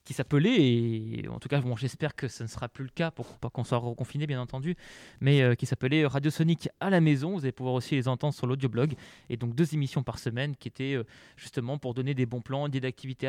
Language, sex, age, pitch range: French, male, 20-39, 120-145 Hz